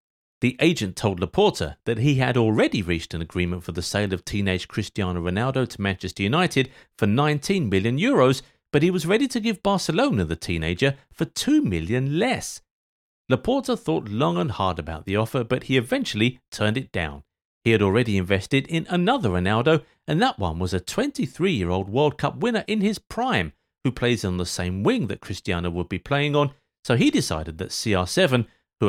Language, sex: English, male